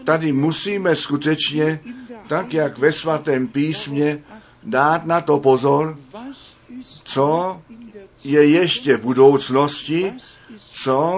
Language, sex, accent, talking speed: Czech, male, native, 95 wpm